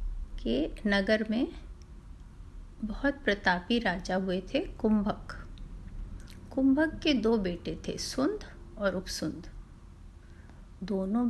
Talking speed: 95 wpm